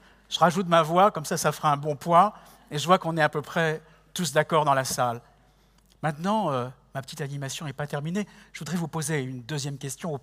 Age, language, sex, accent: 60-79, French, male, French